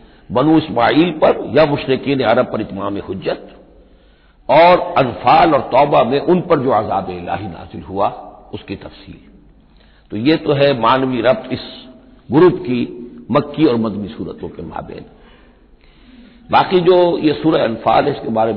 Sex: male